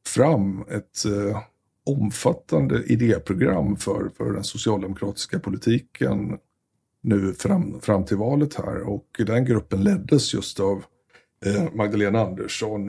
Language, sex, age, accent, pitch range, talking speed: Swedish, male, 60-79, native, 100-115 Hz, 105 wpm